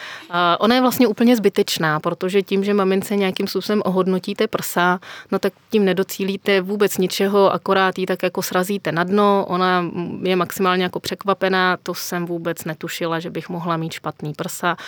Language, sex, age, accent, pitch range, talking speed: Czech, female, 30-49, native, 165-185 Hz, 165 wpm